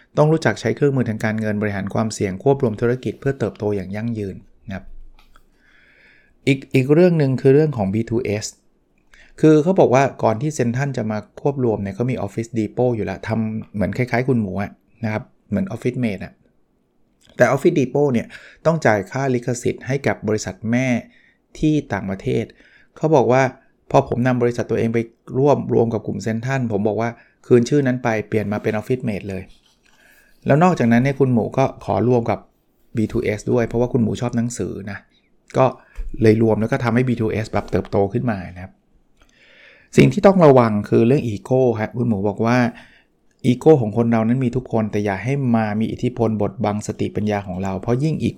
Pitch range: 105-125 Hz